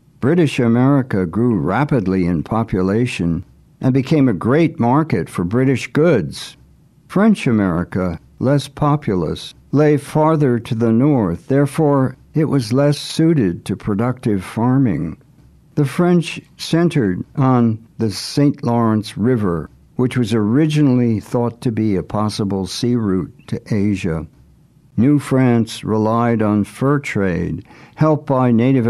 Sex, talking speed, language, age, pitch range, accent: male, 125 wpm, English, 60-79, 105-145 Hz, American